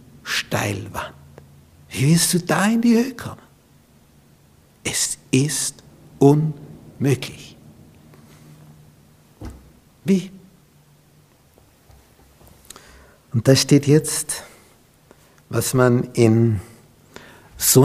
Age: 60-79